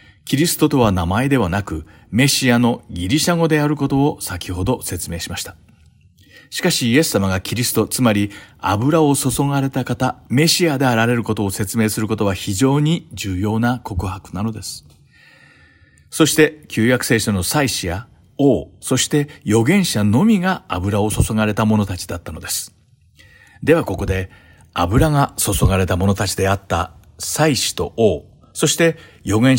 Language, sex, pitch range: Japanese, male, 95-140 Hz